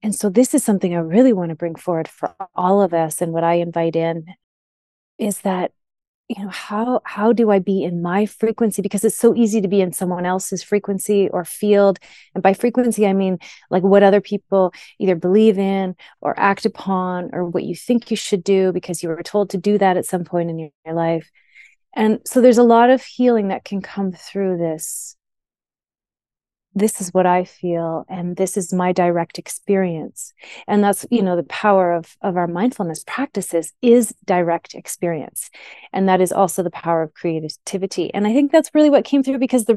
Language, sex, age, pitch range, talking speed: English, female, 30-49, 180-230 Hz, 200 wpm